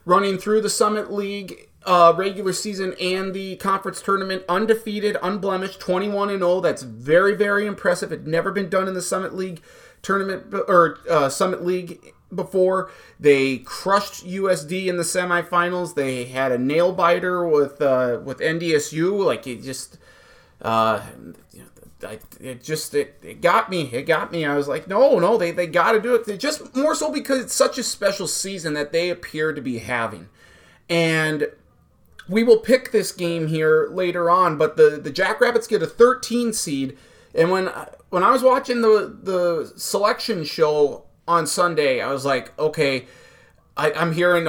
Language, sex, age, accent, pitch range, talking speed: English, male, 30-49, American, 160-210 Hz, 165 wpm